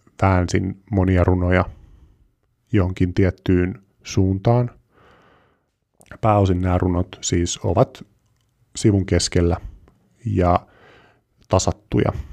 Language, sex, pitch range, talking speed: Finnish, male, 95-115 Hz, 75 wpm